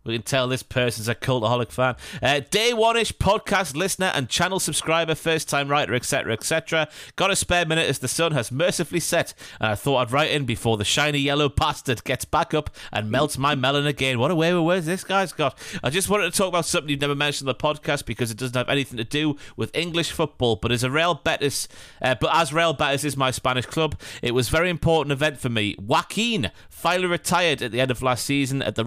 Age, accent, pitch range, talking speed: 30-49, British, 125-165 Hz, 240 wpm